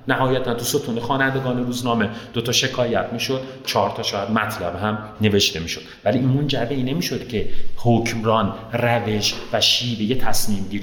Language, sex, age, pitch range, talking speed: Persian, male, 30-49, 100-130 Hz, 140 wpm